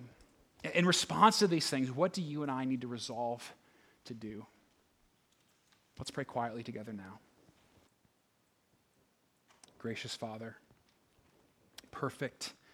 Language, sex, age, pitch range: English, male, 30-49, 110-130 Hz